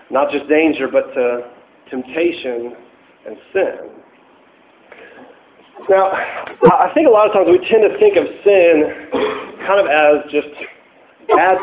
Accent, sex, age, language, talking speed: American, male, 40-59, English, 135 wpm